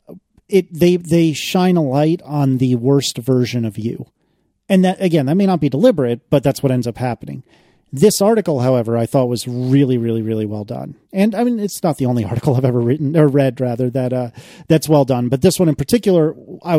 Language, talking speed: English, 220 wpm